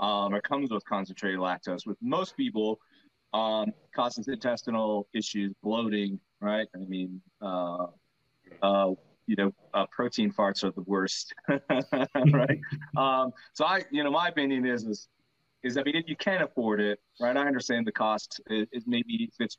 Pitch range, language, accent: 95-125 Hz, English, American